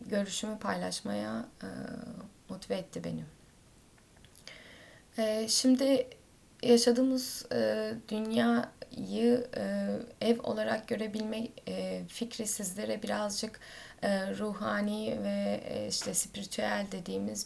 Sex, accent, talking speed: female, native, 85 wpm